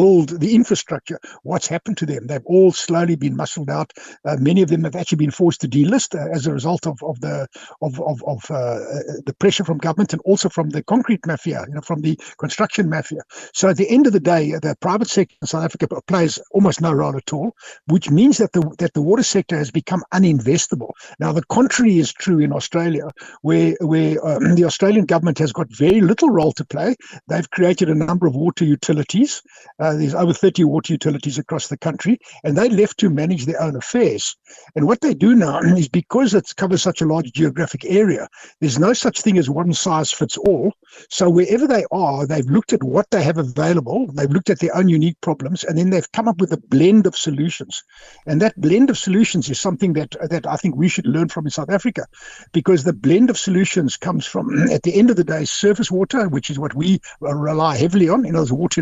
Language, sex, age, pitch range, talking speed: English, male, 60-79, 155-195 Hz, 220 wpm